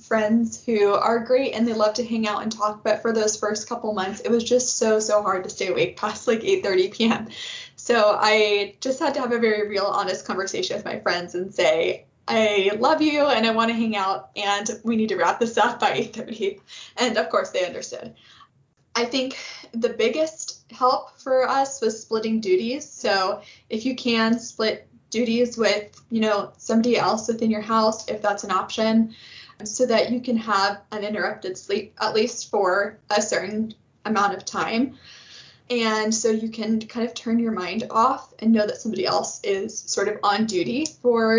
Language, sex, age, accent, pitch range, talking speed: English, female, 20-39, American, 210-240 Hz, 195 wpm